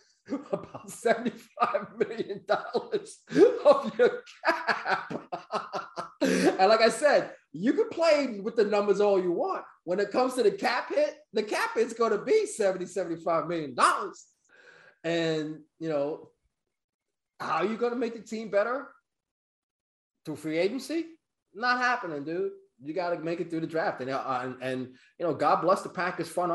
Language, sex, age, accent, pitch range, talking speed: English, male, 20-39, American, 155-240 Hz, 165 wpm